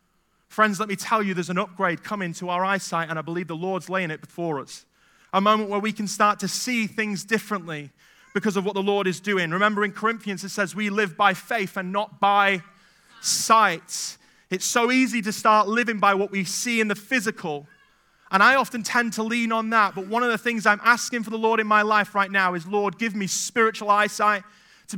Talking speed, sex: 225 wpm, male